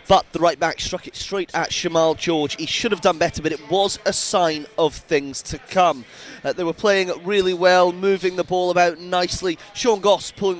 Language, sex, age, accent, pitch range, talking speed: English, male, 20-39, British, 165-200 Hz, 215 wpm